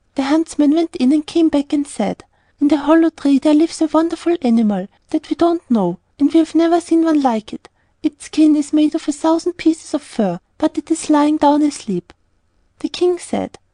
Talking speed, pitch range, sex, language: 215 wpm, 260-325 Hz, female, English